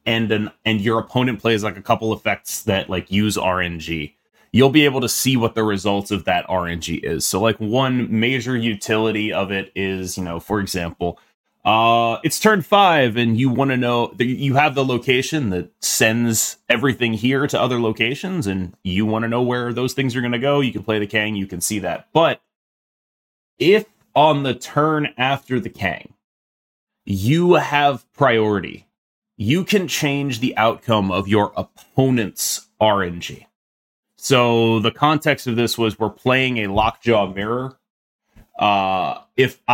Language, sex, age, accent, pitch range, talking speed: English, male, 30-49, American, 105-130 Hz, 170 wpm